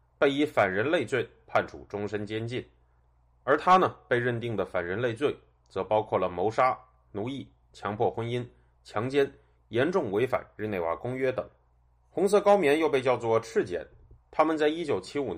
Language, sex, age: Chinese, male, 30-49